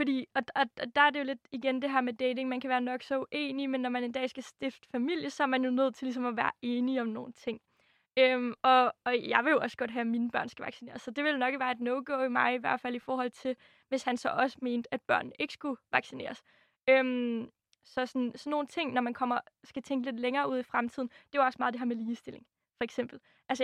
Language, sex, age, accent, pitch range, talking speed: Danish, female, 20-39, native, 245-275 Hz, 275 wpm